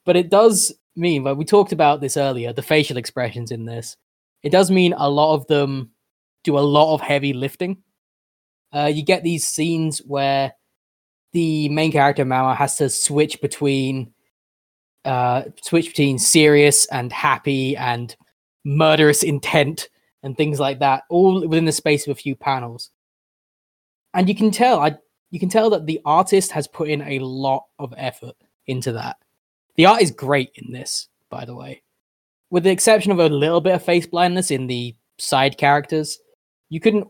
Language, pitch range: English, 130-160 Hz